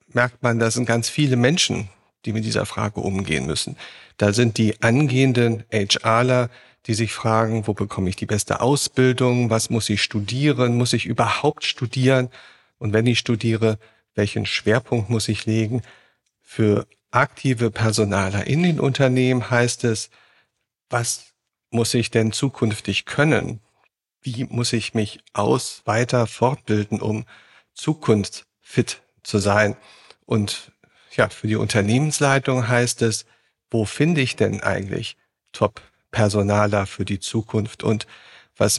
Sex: male